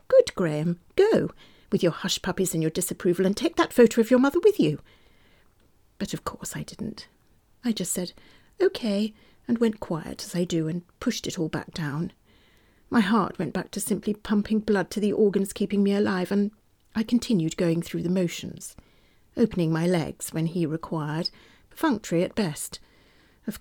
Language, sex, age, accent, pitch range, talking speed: English, female, 40-59, British, 170-220 Hz, 180 wpm